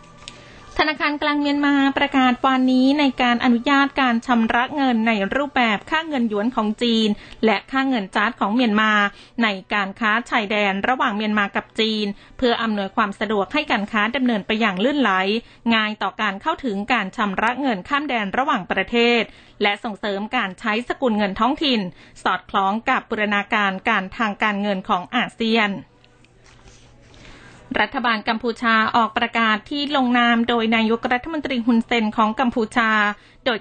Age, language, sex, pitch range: 20-39, Thai, female, 210-250 Hz